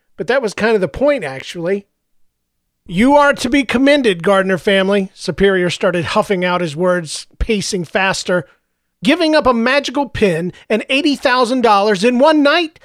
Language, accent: English, American